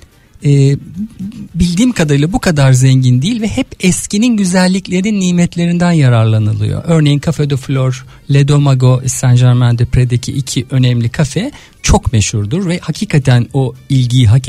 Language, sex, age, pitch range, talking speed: Turkish, male, 50-69, 130-180 Hz, 135 wpm